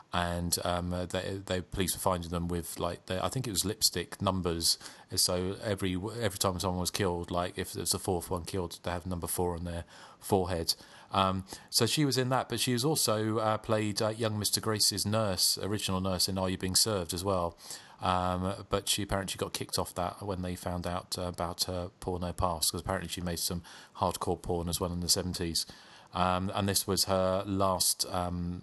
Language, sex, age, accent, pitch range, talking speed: English, male, 30-49, British, 90-100 Hz, 210 wpm